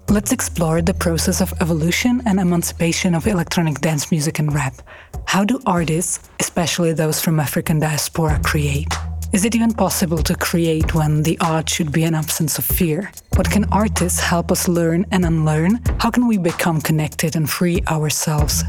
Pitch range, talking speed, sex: 155-190 Hz, 175 wpm, female